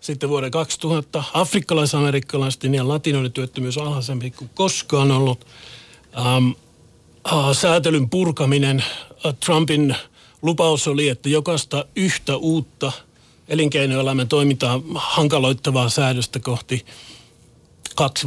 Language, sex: Finnish, male